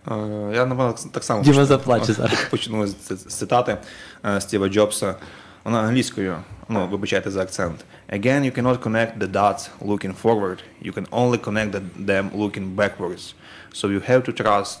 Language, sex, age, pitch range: English, male, 20-39, 95-115 Hz